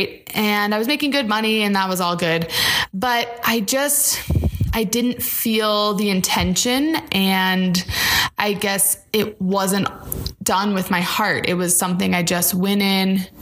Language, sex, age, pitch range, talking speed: English, female, 20-39, 180-225 Hz, 155 wpm